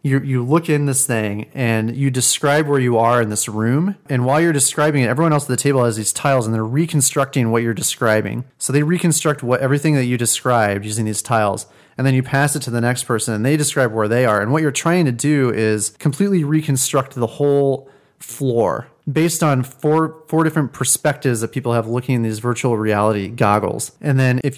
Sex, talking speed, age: male, 220 wpm, 30-49